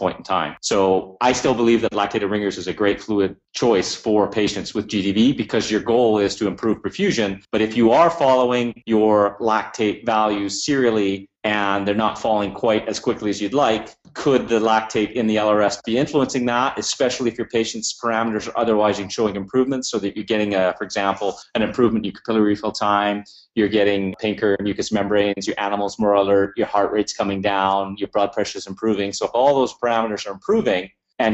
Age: 30-49